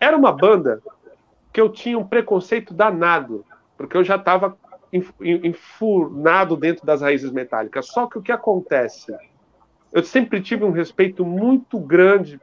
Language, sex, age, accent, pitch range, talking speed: Portuguese, male, 50-69, Brazilian, 165-235 Hz, 145 wpm